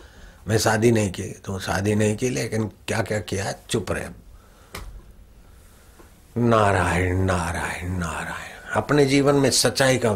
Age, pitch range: 60-79, 85-110 Hz